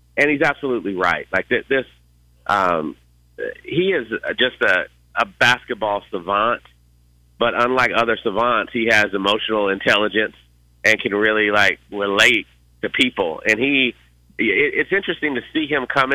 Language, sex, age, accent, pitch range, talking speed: English, male, 40-59, American, 90-120 Hz, 140 wpm